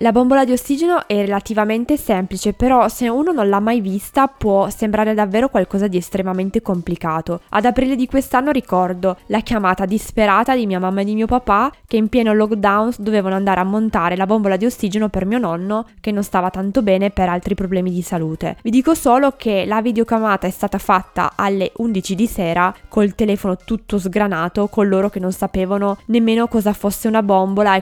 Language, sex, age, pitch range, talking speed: Italian, female, 20-39, 190-235 Hz, 190 wpm